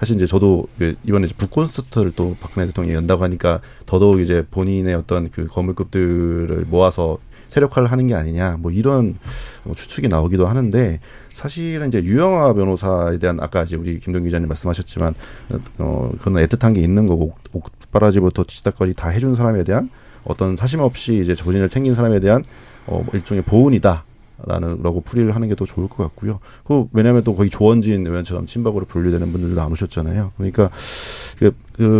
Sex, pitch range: male, 90-120 Hz